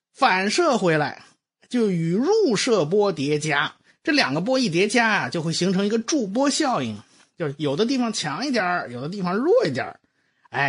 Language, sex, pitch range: Chinese, male, 150-235 Hz